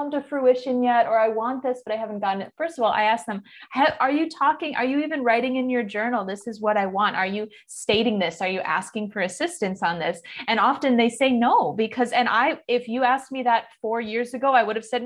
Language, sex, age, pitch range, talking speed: English, female, 20-39, 200-250 Hz, 255 wpm